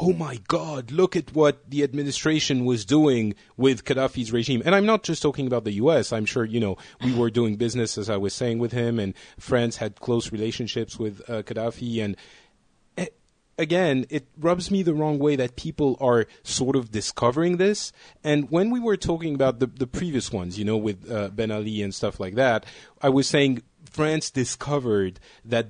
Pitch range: 110-145 Hz